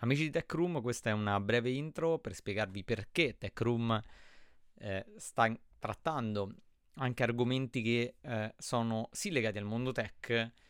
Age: 30-49